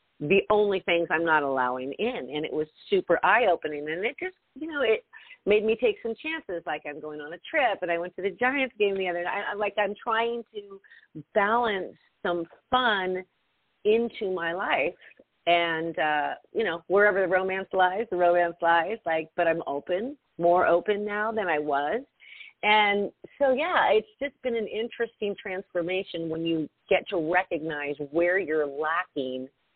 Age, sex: 40-59, female